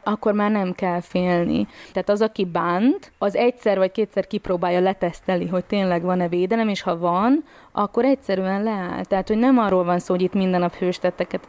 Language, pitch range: Hungarian, 180-215 Hz